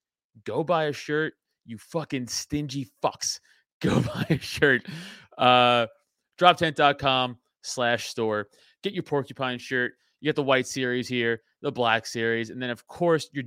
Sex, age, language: male, 30-49, English